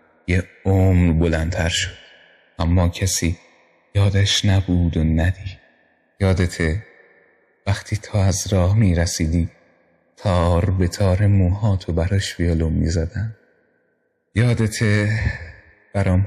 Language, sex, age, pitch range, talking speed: Persian, male, 30-49, 85-100 Hz, 90 wpm